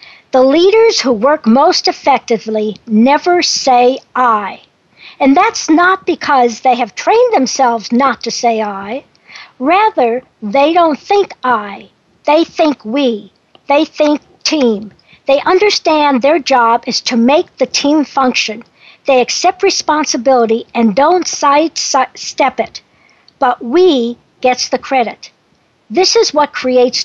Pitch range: 240-320 Hz